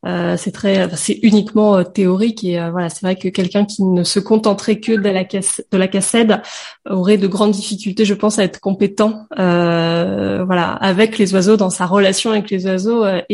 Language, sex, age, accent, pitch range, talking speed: French, female, 20-39, French, 185-215 Hz, 210 wpm